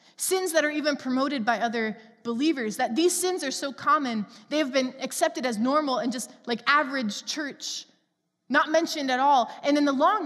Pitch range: 215-280 Hz